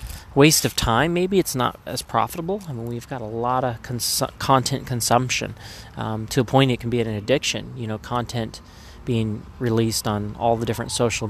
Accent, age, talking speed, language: American, 20-39, 190 wpm, English